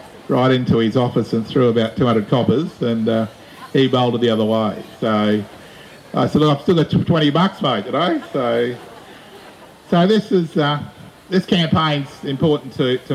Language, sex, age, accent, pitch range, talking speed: English, male, 50-69, Australian, 125-155 Hz, 175 wpm